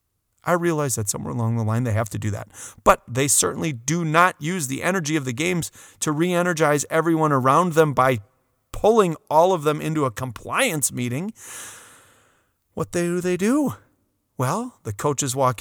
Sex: male